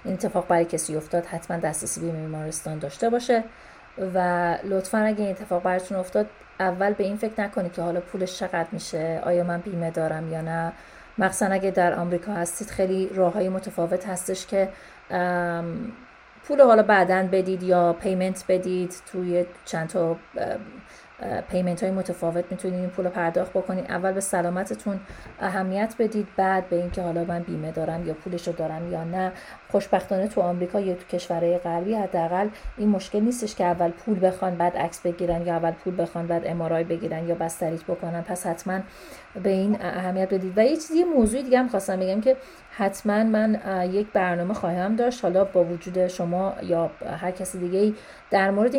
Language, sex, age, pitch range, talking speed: Persian, female, 30-49, 175-200 Hz, 170 wpm